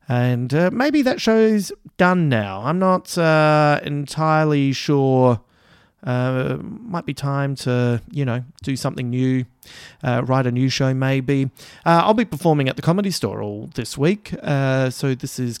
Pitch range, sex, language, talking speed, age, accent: 125-160 Hz, male, English, 165 wpm, 30-49, Australian